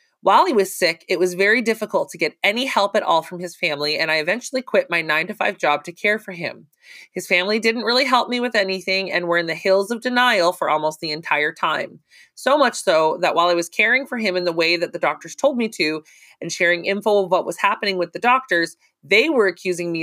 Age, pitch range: 30-49, 165-215 Hz